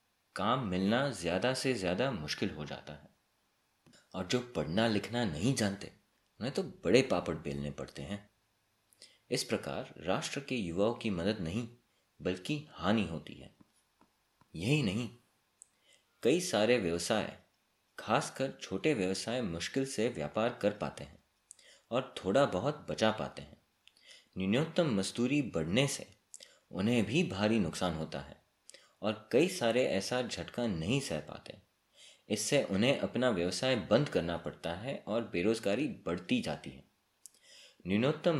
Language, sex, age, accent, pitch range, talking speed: Hindi, male, 30-49, native, 85-120 Hz, 135 wpm